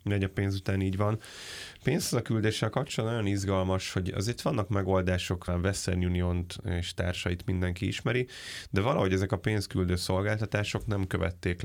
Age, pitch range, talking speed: 20-39, 90-105 Hz, 160 wpm